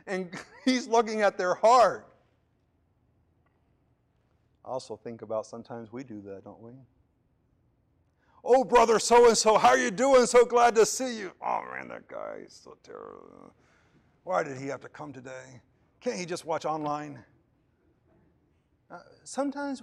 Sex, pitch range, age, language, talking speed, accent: male, 130-205 Hz, 50-69, English, 150 wpm, American